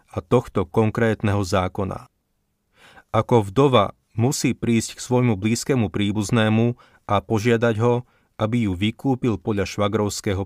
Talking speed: 115 wpm